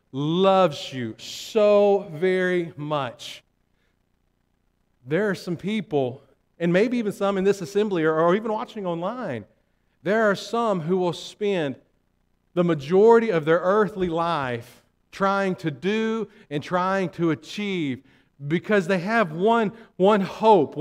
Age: 50-69